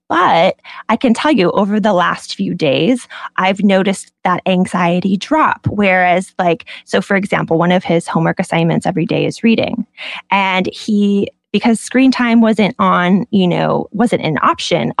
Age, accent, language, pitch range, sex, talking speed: 20-39, American, English, 175-225 Hz, female, 170 wpm